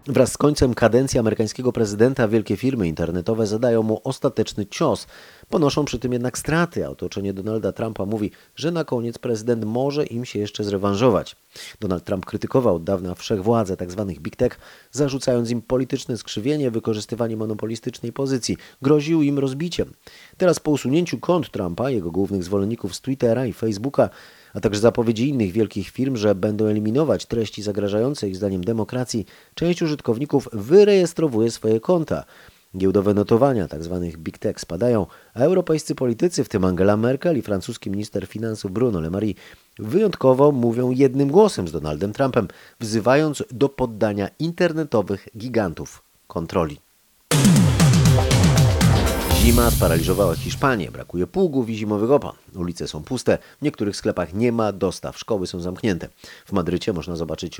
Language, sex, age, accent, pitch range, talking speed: Polish, male, 30-49, native, 95-130 Hz, 145 wpm